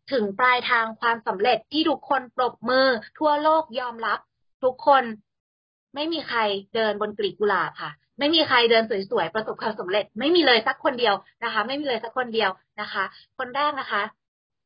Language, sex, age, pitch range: Thai, female, 20-39, 210-265 Hz